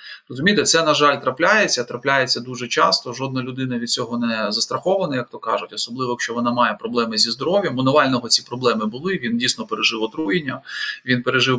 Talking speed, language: 175 wpm, Ukrainian